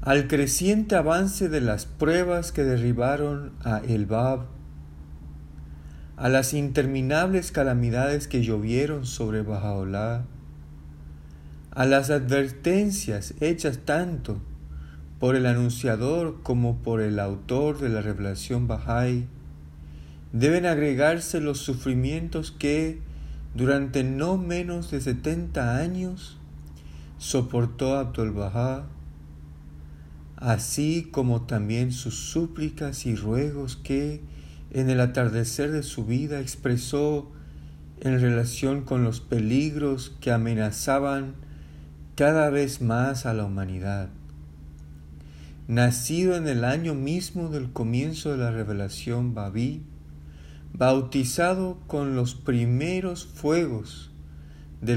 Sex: male